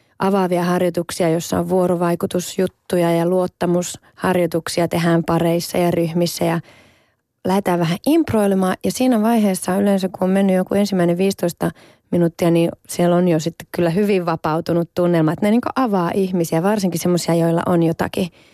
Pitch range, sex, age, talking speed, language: 170-195 Hz, female, 30-49, 145 wpm, Finnish